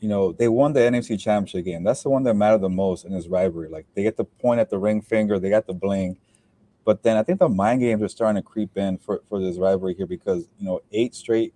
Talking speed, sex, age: 275 wpm, male, 20-39